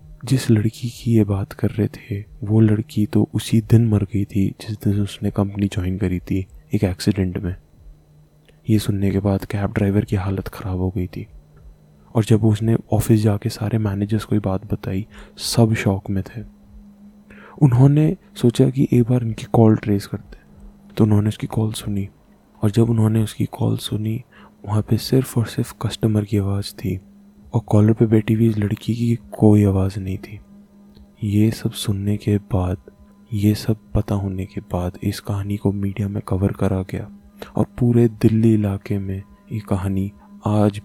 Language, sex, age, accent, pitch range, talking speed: Hindi, male, 20-39, native, 95-115 Hz, 180 wpm